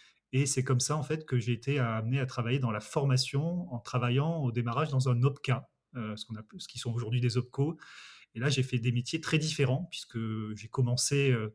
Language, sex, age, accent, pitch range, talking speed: French, male, 30-49, French, 120-145 Hz, 210 wpm